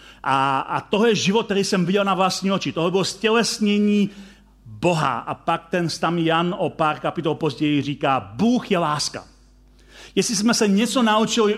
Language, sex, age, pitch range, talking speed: Czech, male, 40-59, 155-205 Hz, 165 wpm